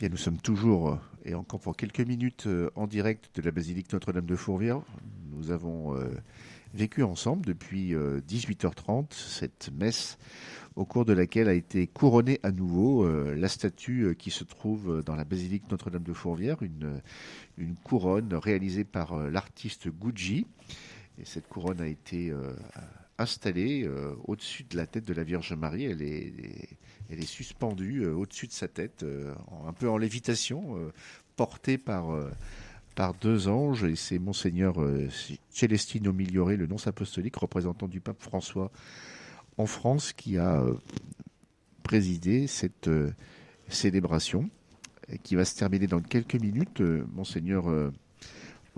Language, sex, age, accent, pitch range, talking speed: French, male, 50-69, French, 85-110 Hz, 150 wpm